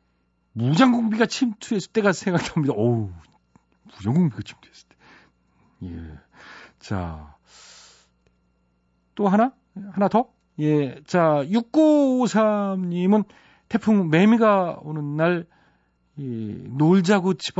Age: 40-59